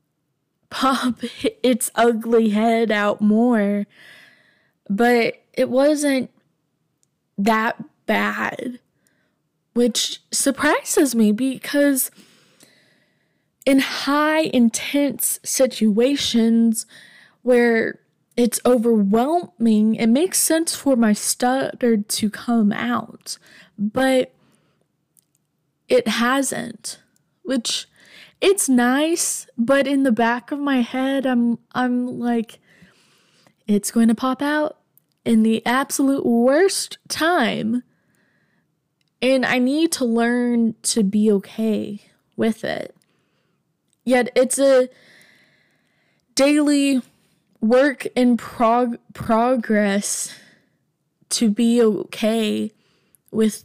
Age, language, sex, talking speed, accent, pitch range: 10-29, English, female, 90 wpm, American, 215-260 Hz